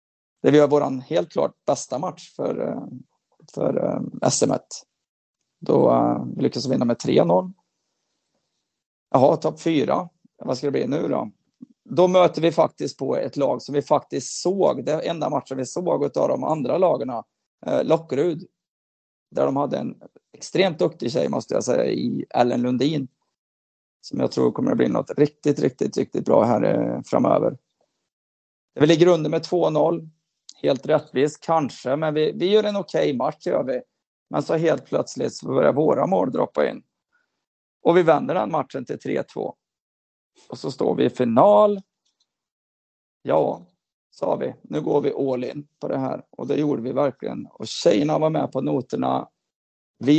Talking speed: 165 wpm